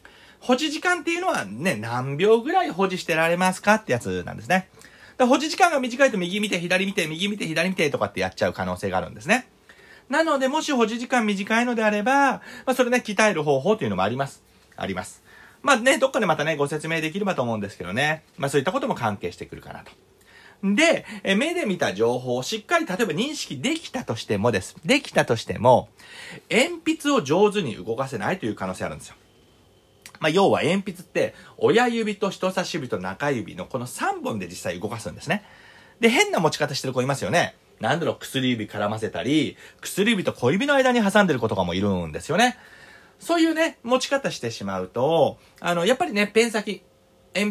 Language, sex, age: Japanese, male, 40-59